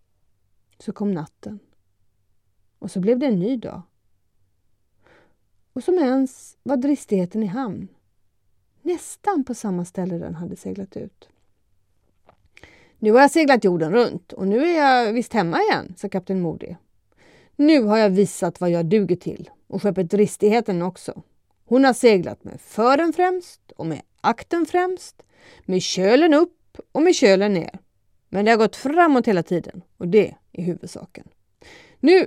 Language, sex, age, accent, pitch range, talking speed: Swedish, female, 30-49, native, 165-230 Hz, 150 wpm